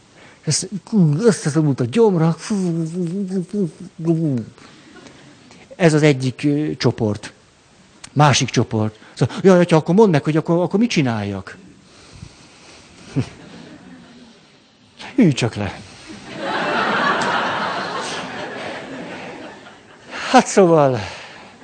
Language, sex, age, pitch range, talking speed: Hungarian, male, 60-79, 115-170 Hz, 70 wpm